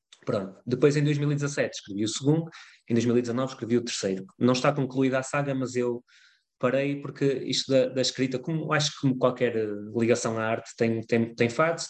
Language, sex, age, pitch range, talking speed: Portuguese, male, 20-39, 110-135 Hz, 175 wpm